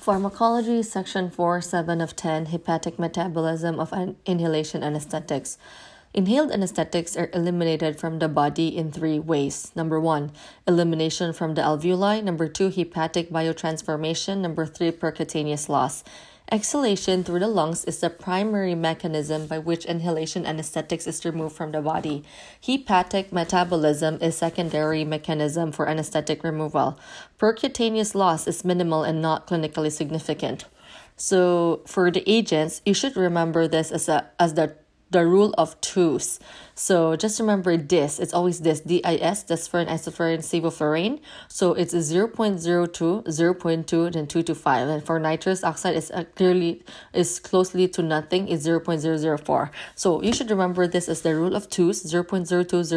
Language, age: English, 20-39